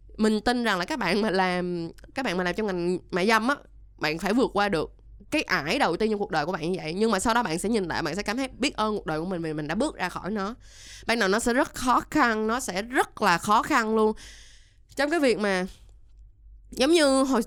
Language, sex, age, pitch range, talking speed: Vietnamese, female, 20-39, 175-235 Hz, 270 wpm